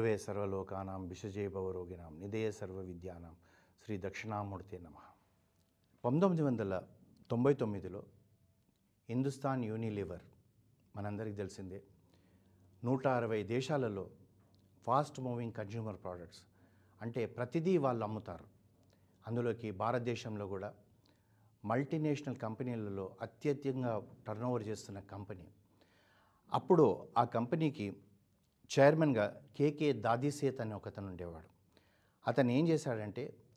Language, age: Telugu, 60-79